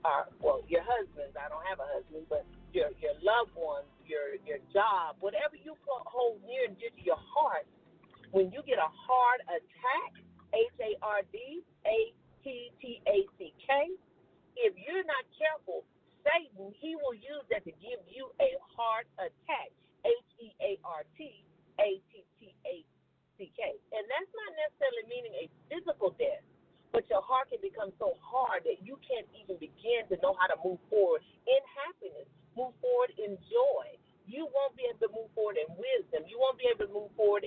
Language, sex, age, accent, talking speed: English, female, 50-69, American, 185 wpm